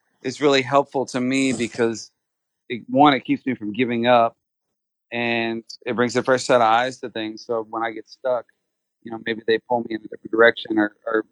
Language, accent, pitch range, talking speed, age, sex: English, American, 110-130 Hz, 210 wpm, 40-59, male